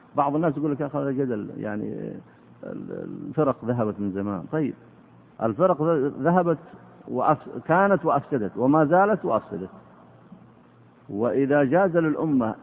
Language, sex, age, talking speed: Arabic, male, 50-69, 110 wpm